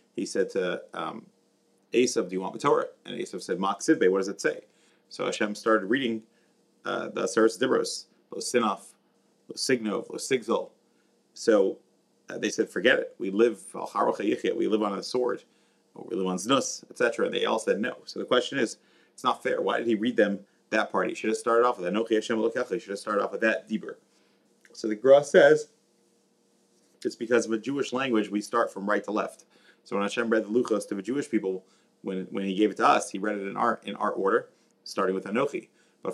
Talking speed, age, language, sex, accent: 220 wpm, 30-49, English, male, American